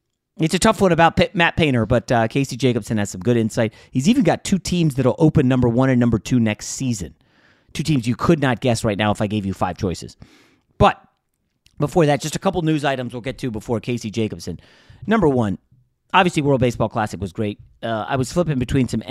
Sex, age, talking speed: male, 30-49, 225 wpm